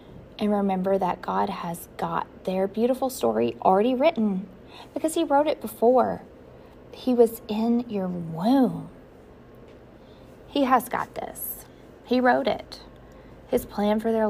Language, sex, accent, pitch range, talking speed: English, female, American, 180-230 Hz, 135 wpm